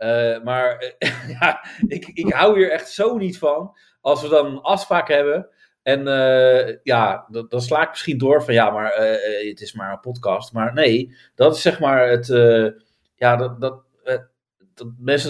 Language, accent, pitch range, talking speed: Dutch, Dutch, 125-210 Hz, 195 wpm